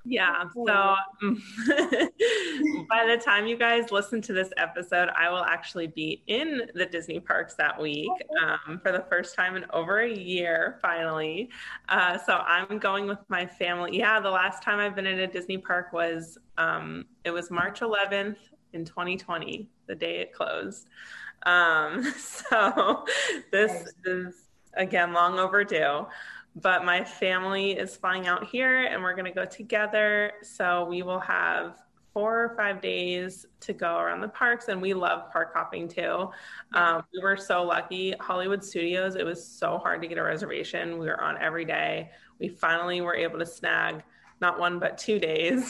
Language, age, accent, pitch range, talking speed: English, 20-39, American, 175-210 Hz, 170 wpm